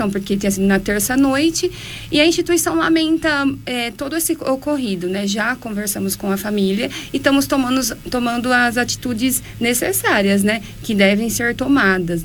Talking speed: 150 wpm